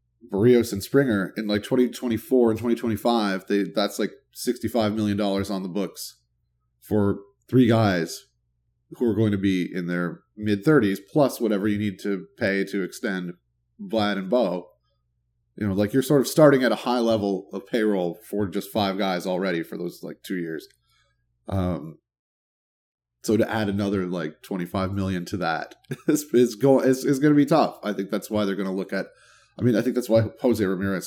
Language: English